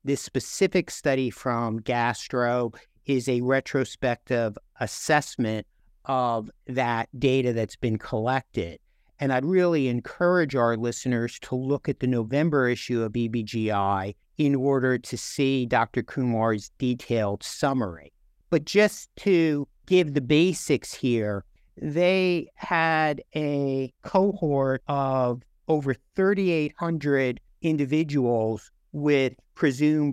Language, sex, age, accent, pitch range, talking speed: English, male, 50-69, American, 120-150 Hz, 110 wpm